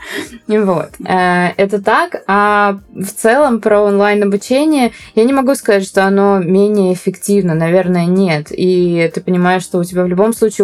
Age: 20-39